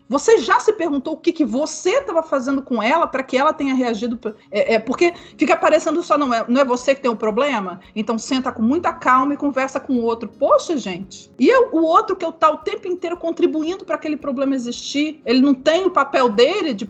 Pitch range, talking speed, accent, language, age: 220-305 Hz, 240 wpm, Brazilian, Portuguese, 40-59